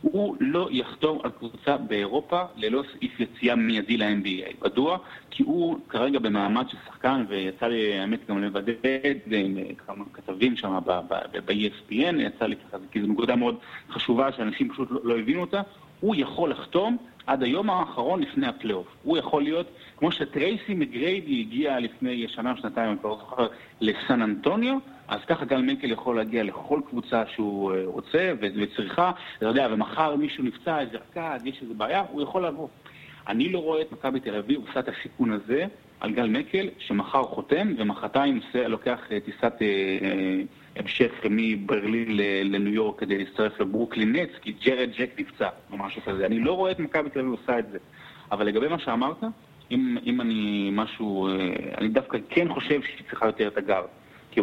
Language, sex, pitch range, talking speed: Hebrew, male, 105-165 Hz, 160 wpm